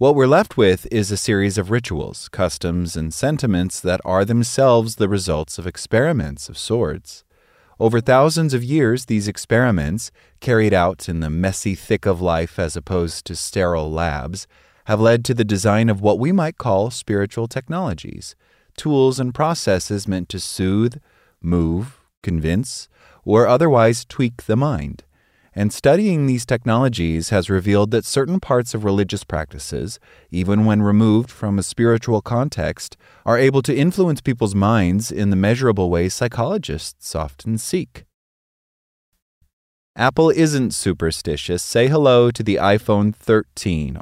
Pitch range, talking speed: 90-120 Hz, 145 wpm